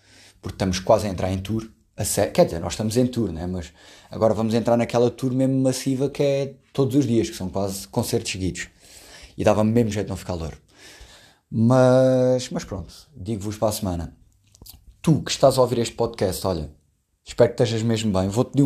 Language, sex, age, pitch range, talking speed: Portuguese, male, 20-39, 95-125 Hz, 200 wpm